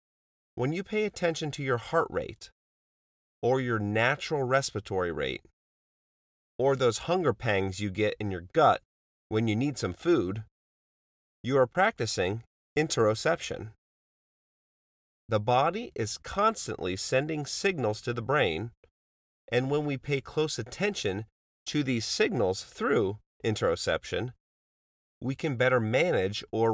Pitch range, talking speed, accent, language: 90-135 Hz, 125 wpm, American, English